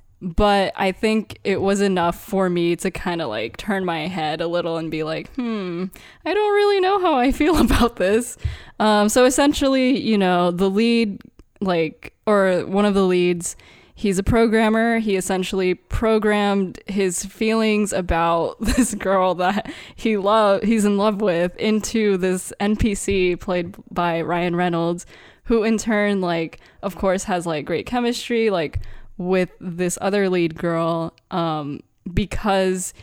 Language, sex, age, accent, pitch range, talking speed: English, female, 10-29, American, 180-220 Hz, 155 wpm